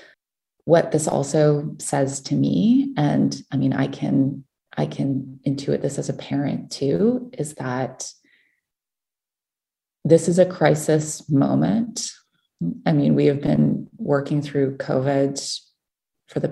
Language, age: English, 30-49